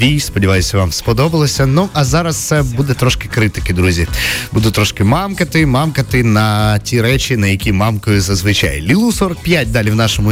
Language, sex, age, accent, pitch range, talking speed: Ukrainian, male, 30-49, native, 110-150 Hz, 155 wpm